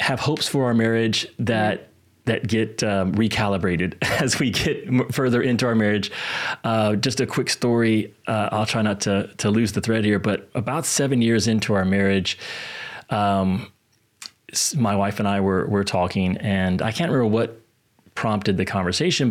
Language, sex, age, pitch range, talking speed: English, male, 30-49, 100-125 Hz, 170 wpm